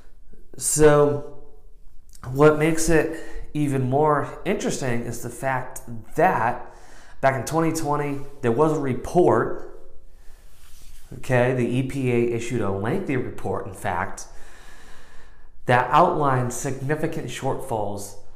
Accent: American